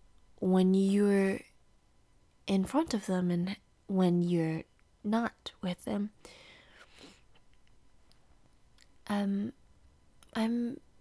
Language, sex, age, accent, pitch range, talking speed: English, female, 20-39, American, 175-200 Hz, 75 wpm